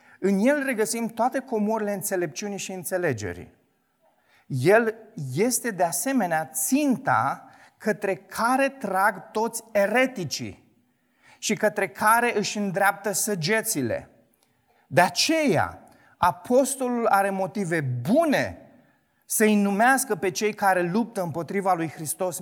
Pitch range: 175-225 Hz